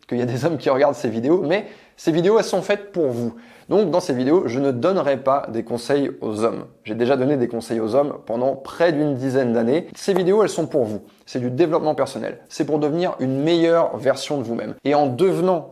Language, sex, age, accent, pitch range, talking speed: French, male, 20-39, French, 125-155 Hz, 240 wpm